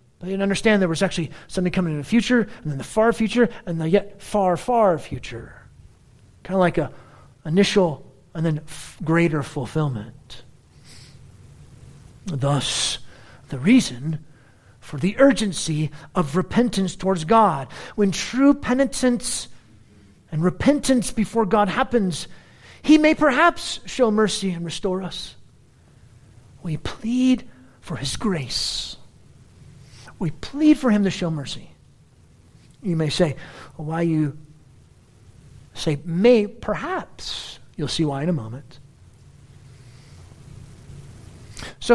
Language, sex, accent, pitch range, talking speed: English, male, American, 145-230 Hz, 125 wpm